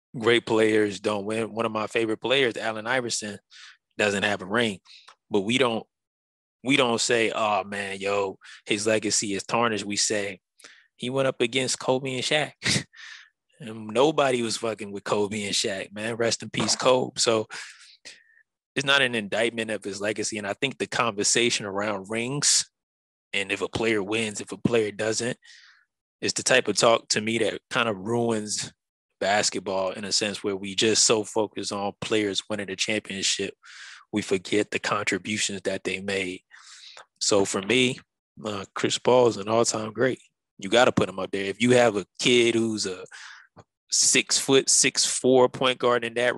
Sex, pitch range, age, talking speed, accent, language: male, 100-125 Hz, 20-39, 175 wpm, American, English